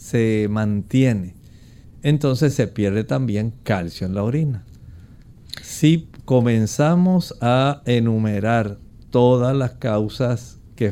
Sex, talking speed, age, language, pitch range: male, 100 wpm, 50-69, Spanish, 110-135 Hz